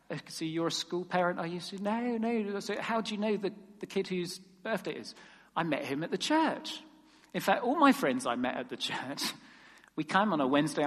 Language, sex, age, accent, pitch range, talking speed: English, male, 40-59, British, 160-235 Hz, 245 wpm